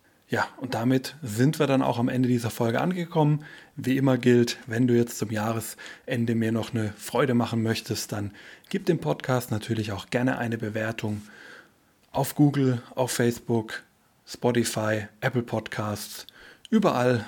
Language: German